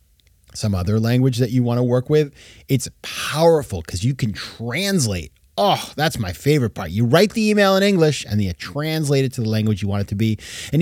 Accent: American